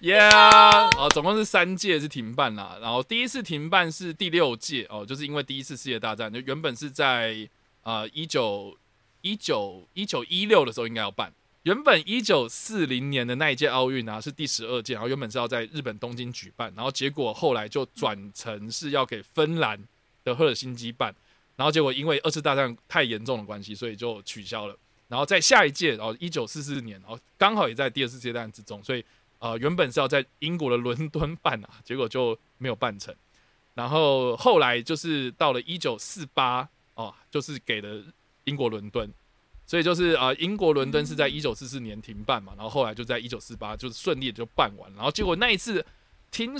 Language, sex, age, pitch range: Chinese, male, 20-39, 115-160 Hz